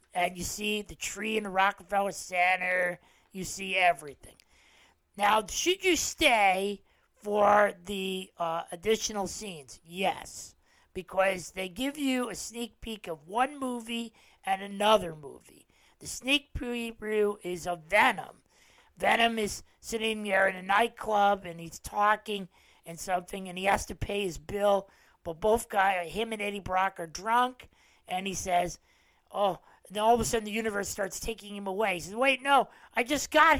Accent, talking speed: American, 165 wpm